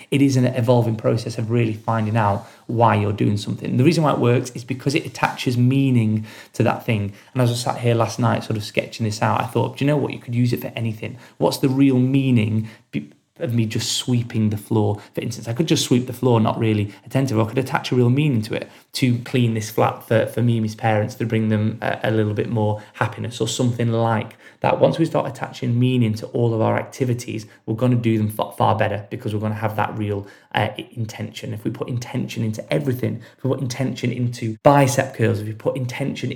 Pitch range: 110-125 Hz